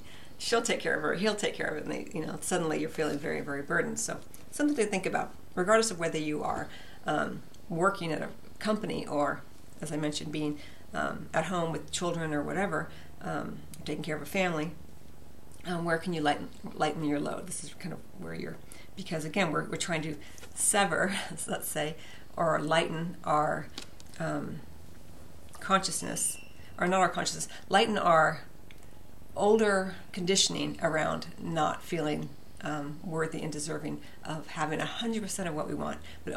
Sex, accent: female, American